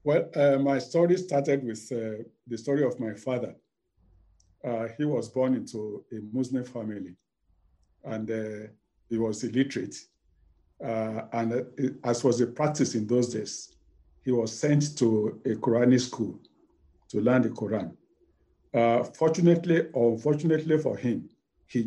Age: 50-69